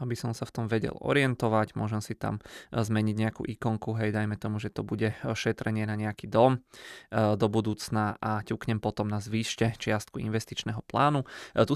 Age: 20-39